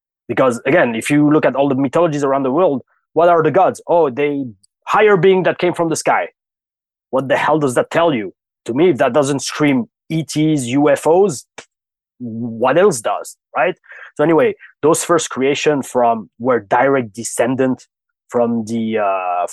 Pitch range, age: 115-145 Hz, 30-49